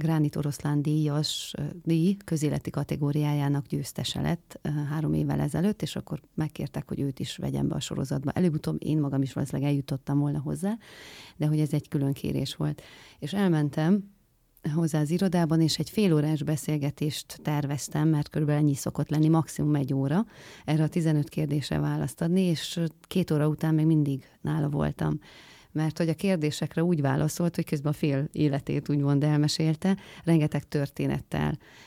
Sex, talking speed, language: female, 160 wpm, Hungarian